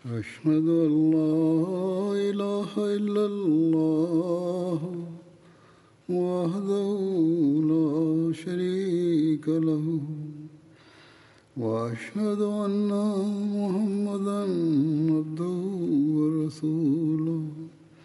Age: 60-79